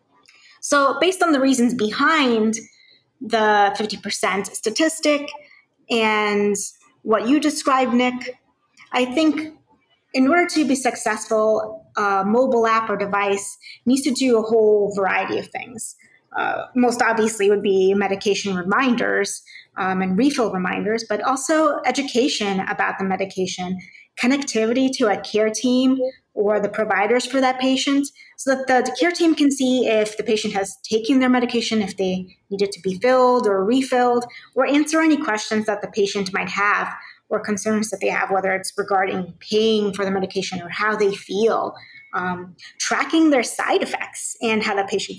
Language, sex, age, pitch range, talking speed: English, female, 30-49, 200-260 Hz, 160 wpm